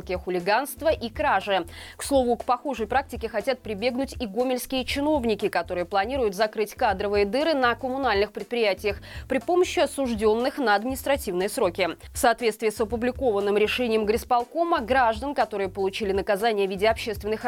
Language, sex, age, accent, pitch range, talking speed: Russian, female, 20-39, native, 205-270 Hz, 135 wpm